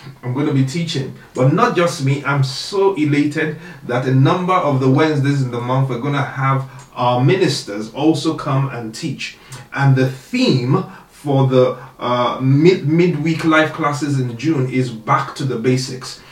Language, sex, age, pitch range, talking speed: English, male, 30-49, 125-145 Hz, 175 wpm